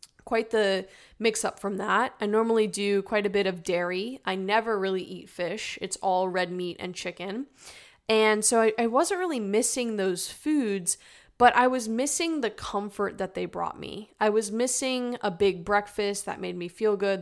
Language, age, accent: English, 10-29, American